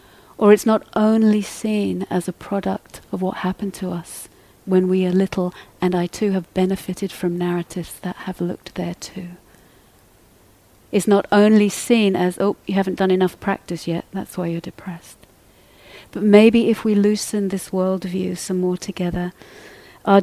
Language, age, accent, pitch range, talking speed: English, 40-59, British, 170-195 Hz, 165 wpm